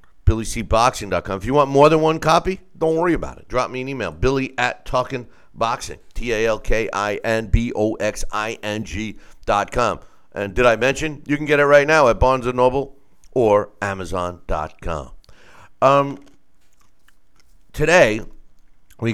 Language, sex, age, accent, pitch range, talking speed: English, male, 50-69, American, 90-125 Hz, 125 wpm